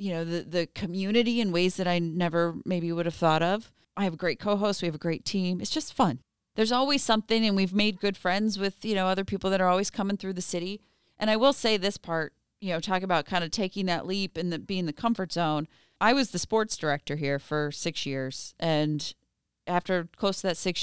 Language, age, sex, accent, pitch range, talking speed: English, 30-49, female, American, 165-205 Hz, 240 wpm